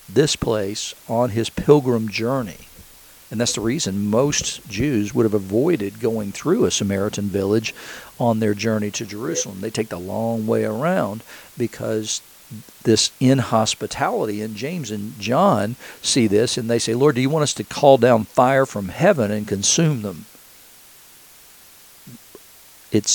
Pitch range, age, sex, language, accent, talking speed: 105-125 Hz, 50-69, male, English, American, 150 wpm